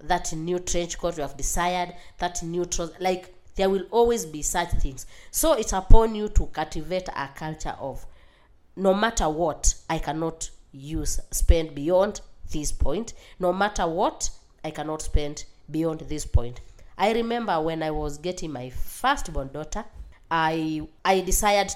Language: English